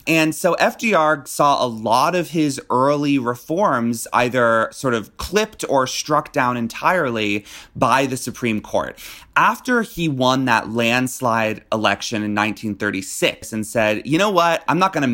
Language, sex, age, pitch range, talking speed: English, male, 30-49, 120-170 Hz, 155 wpm